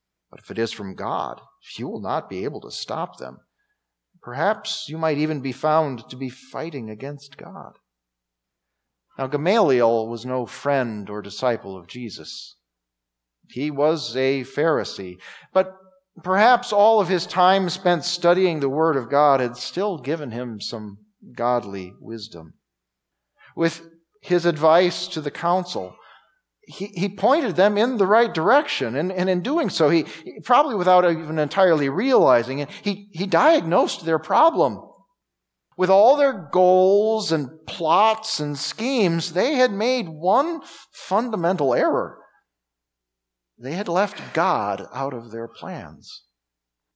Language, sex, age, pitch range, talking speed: English, male, 40-59, 115-185 Hz, 135 wpm